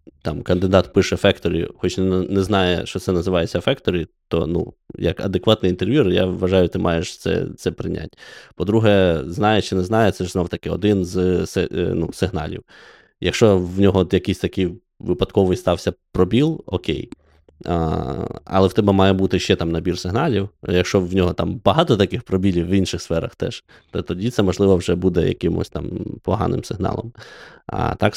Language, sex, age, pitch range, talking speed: Ukrainian, male, 20-39, 90-110 Hz, 170 wpm